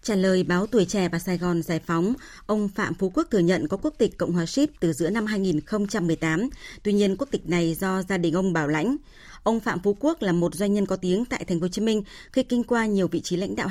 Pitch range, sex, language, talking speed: 175-225 Hz, female, Vietnamese, 265 wpm